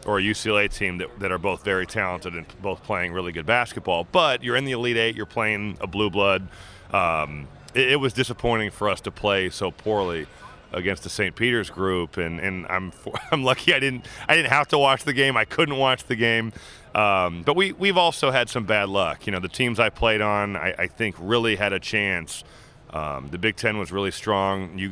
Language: English